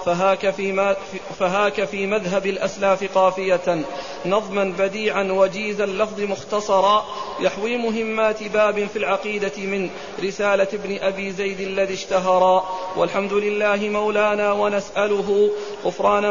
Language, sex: Arabic, male